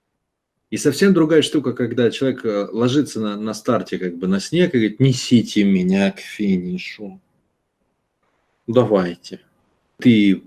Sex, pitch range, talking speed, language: male, 95-130 Hz, 125 wpm, Russian